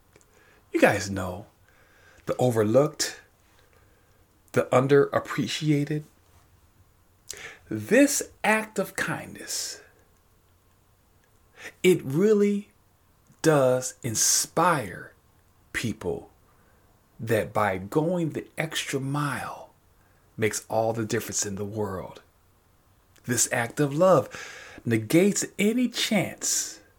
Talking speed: 80 wpm